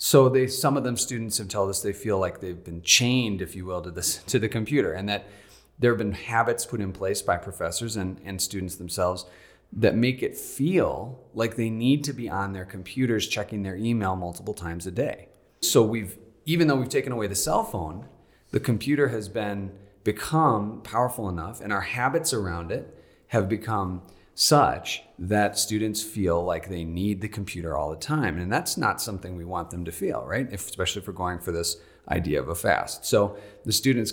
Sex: male